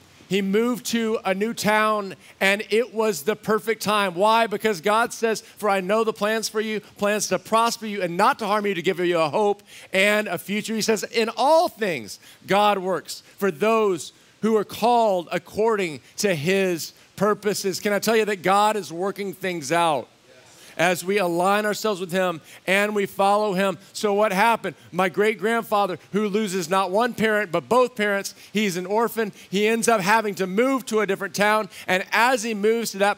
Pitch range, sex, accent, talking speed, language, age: 195-225 Hz, male, American, 195 wpm, English, 40-59